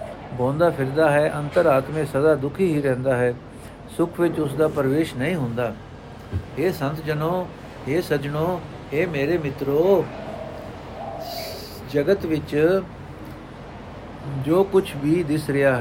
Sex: male